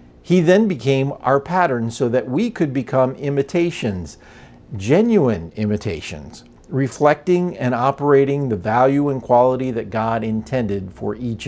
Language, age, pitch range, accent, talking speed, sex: English, 50-69, 105-135 Hz, American, 130 wpm, male